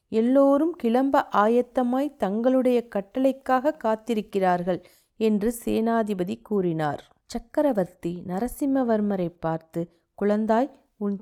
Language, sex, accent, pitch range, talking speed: Tamil, female, native, 200-255 Hz, 75 wpm